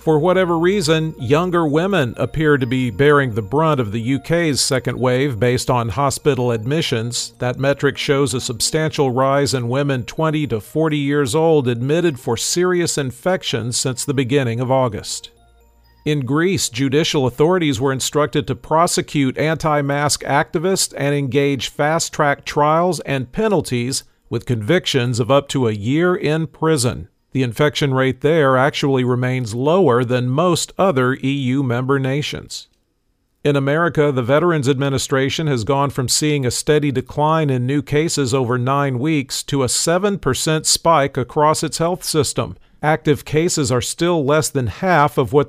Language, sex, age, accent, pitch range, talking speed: English, male, 50-69, American, 130-155 Hz, 150 wpm